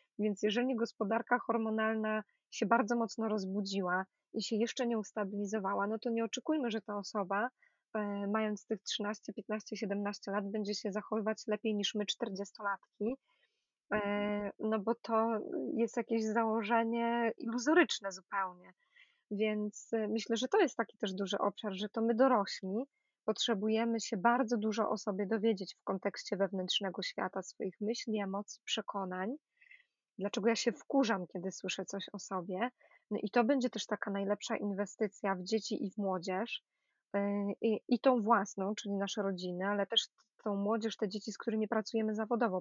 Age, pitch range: 20-39, 200-230 Hz